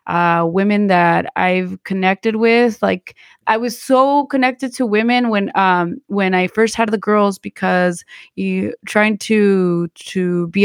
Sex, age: female, 20-39